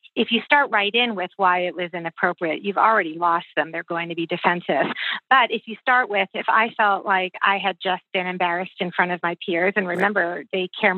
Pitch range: 175-210 Hz